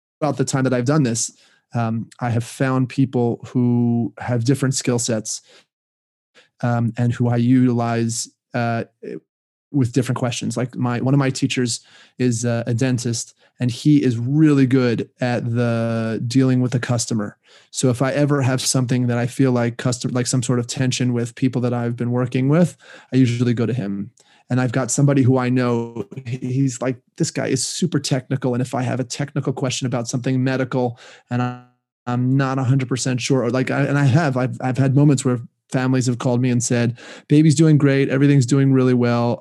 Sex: male